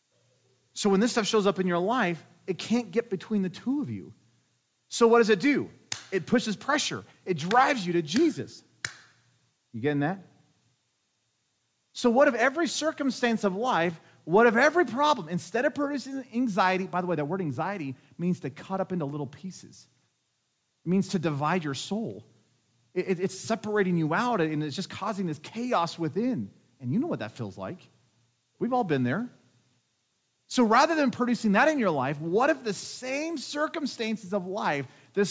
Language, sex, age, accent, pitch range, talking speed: English, male, 40-59, American, 140-235 Hz, 180 wpm